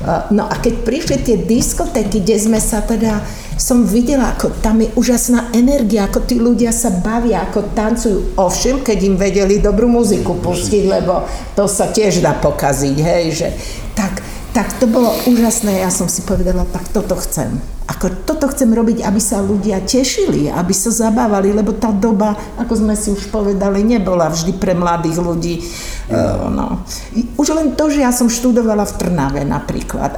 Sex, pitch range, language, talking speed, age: female, 200-245 Hz, Slovak, 165 wpm, 50-69